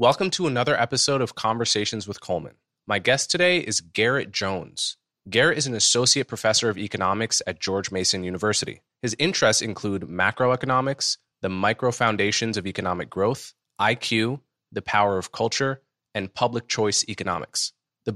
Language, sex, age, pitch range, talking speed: English, male, 20-39, 95-130 Hz, 150 wpm